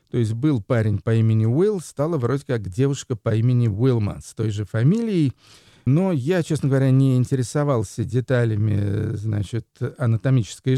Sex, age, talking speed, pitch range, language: male, 50-69, 150 wpm, 120-150 Hz, Russian